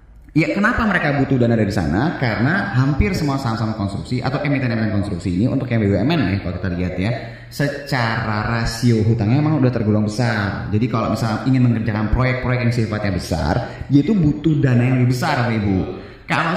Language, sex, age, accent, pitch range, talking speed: Indonesian, male, 30-49, native, 105-140 Hz, 180 wpm